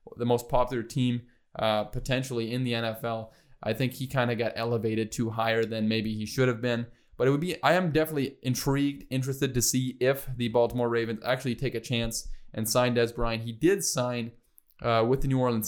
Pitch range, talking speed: 115-135 Hz, 210 wpm